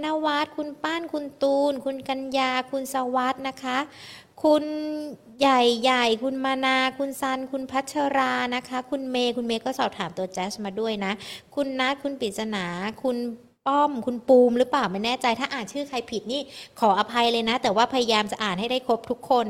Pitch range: 225-270 Hz